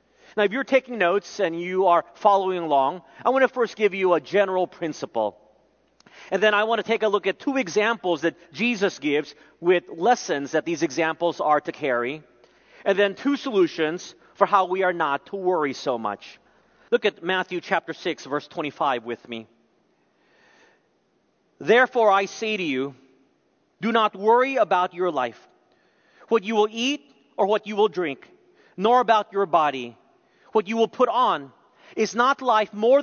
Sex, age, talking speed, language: male, 40-59, 175 wpm, English